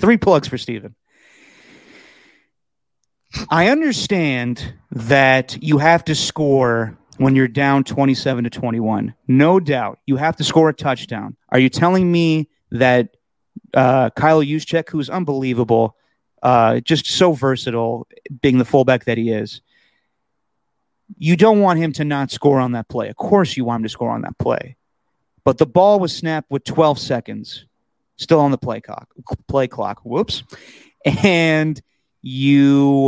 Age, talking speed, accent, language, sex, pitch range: 30-49, 150 wpm, American, English, male, 125-170 Hz